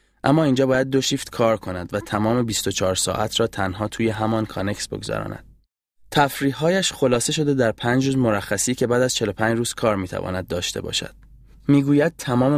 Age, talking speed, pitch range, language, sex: 20-39, 165 wpm, 95-115 Hz, Persian, male